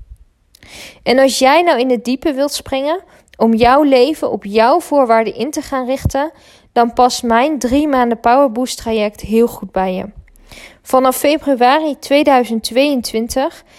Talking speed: 145 wpm